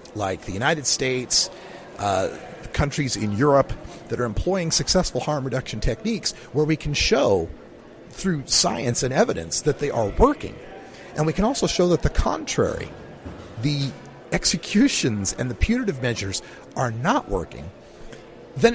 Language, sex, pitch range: English, male, 115-160 Hz